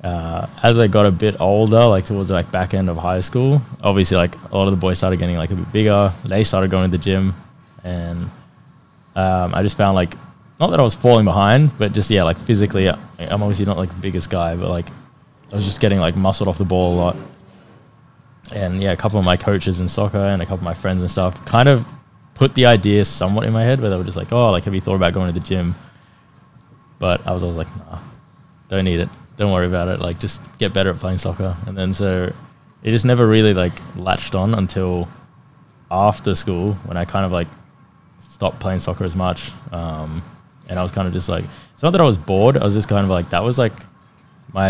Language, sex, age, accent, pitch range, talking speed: English, male, 20-39, Australian, 90-110 Hz, 240 wpm